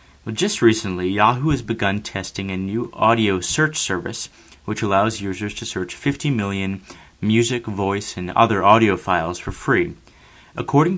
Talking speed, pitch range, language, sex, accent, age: 150 wpm, 90-115 Hz, English, male, American, 30-49